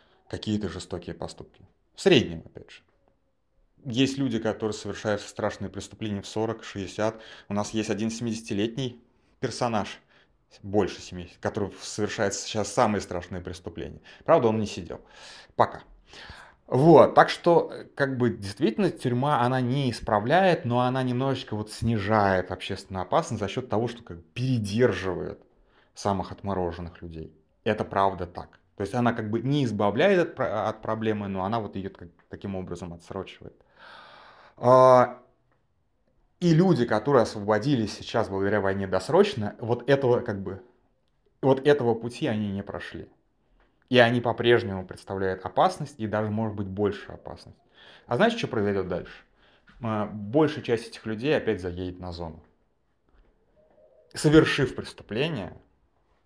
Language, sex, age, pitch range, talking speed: Russian, male, 30-49, 95-120 Hz, 130 wpm